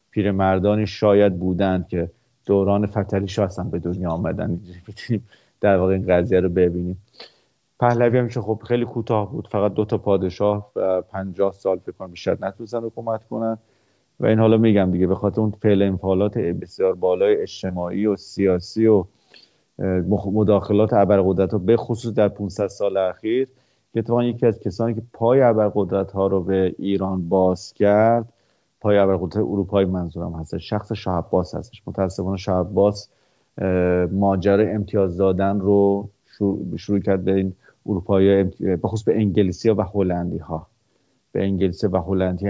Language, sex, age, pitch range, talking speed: English, male, 30-49, 95-110 Hz, 145 wpm